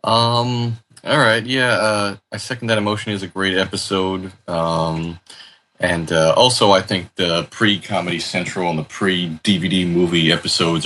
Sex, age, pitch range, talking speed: male, 30-49, 80-95 Hz, 165 wpm